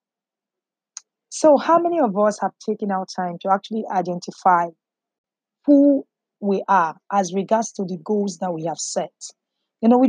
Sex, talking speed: female, 160 wpm